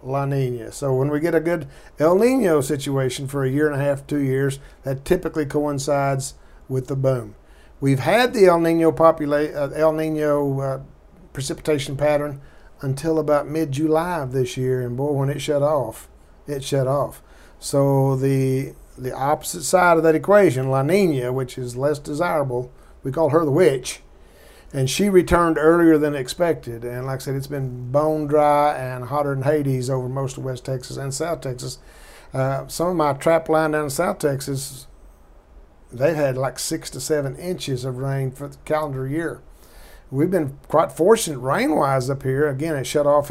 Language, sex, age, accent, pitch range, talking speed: English, male, 50-69, American, 130-155 Hz, 180 wpm